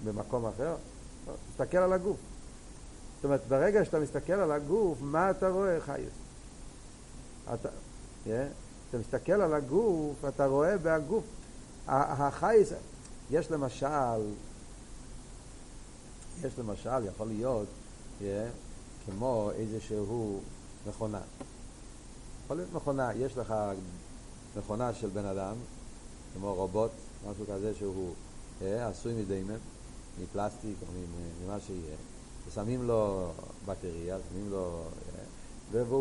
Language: Hebrew